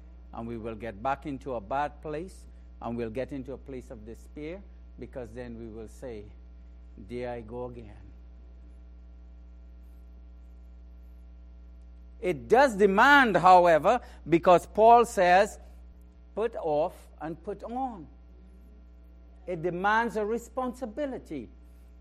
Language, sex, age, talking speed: English, male, 60-79, 115 wpm